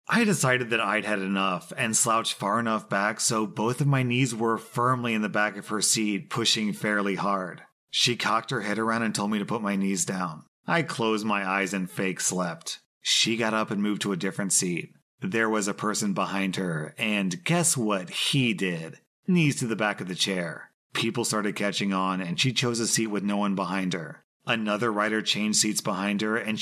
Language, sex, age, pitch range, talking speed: English, male, 30-49, 100-125 Hz, 215 wpm